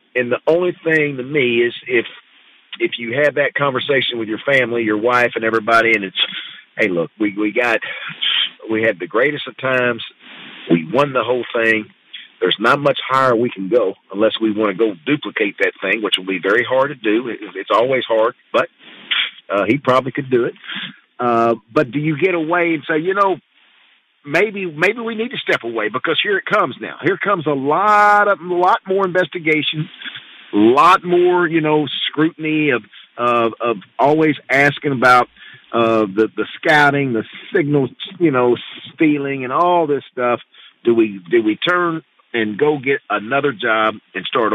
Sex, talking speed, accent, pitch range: male, 185 wpm, American, 115-160 Hz